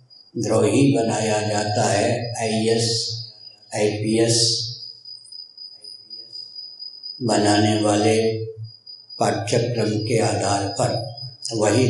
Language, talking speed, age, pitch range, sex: Hindi, 70 wpm, 60-79, 110-120 Hz, male